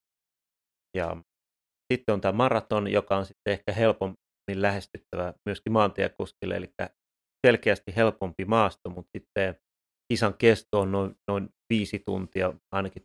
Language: Finnish